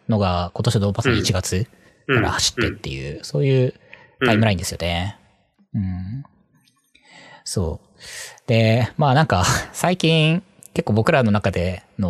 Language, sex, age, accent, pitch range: Japanese, male, 20-39, native, 100-160 Hz